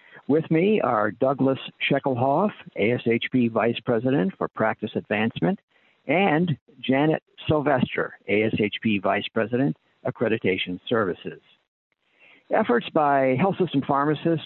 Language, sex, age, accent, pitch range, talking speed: English, male, 60-79, American, 105-135 Hz, 100 wpm